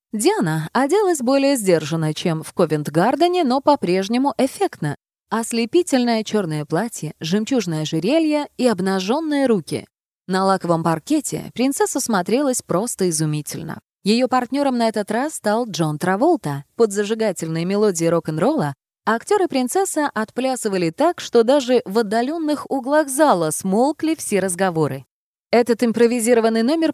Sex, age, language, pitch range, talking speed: female, 20-39, Russian, 175-275 Hz, 120 wpm